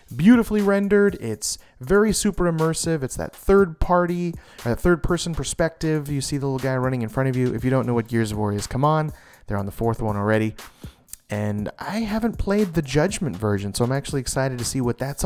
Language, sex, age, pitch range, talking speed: English, male, 30-49, 125-175 Hz, 225 wpm